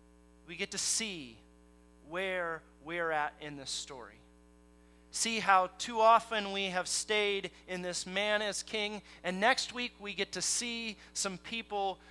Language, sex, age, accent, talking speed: English, male, 30-49, American, 155 wpm